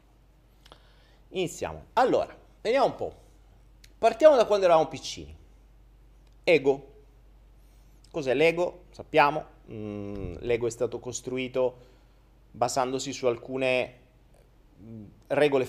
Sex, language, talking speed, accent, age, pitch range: male, Italian, 90 wpm, native, 30-49, 115-140 Hz